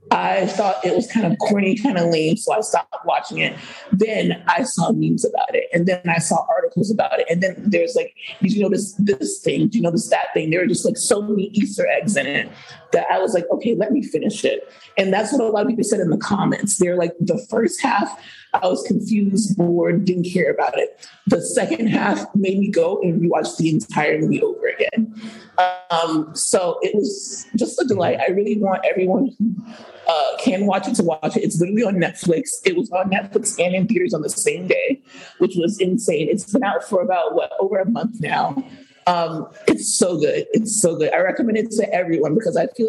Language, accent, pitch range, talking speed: English, American, 185-255 Hz, 225 wpm